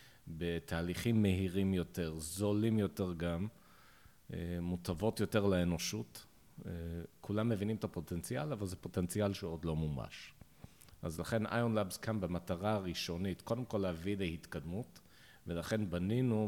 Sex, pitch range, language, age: male, 85-110 Hz, Hebrew, 40-59